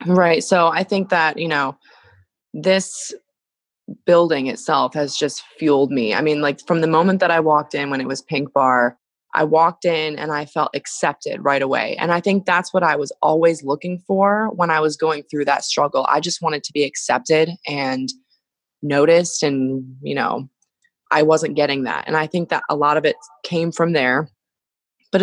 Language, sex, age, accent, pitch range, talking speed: English, female, 20-39, American, 145-180 Hz, 195 wpm